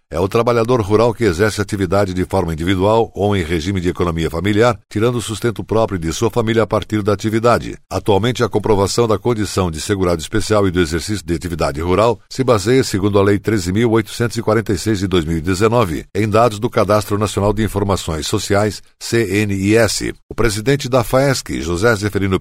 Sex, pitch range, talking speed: male, 95-115 Hz, 170 wpm